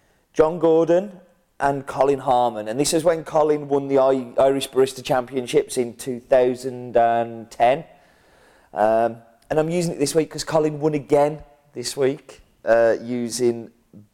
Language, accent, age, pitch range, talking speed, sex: English, British, 30-49, 110-145 Hz, 140 wpm, male